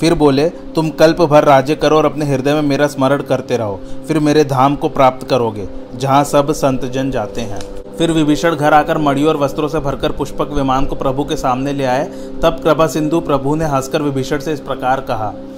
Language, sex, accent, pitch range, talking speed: Hindi, male, native, 130-155 Hz, 210 wpm